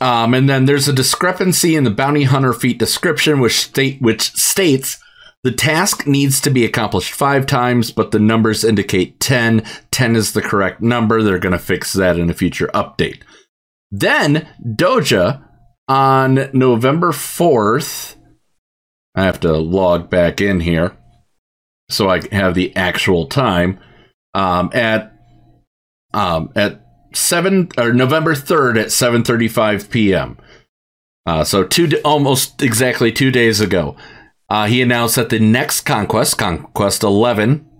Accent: American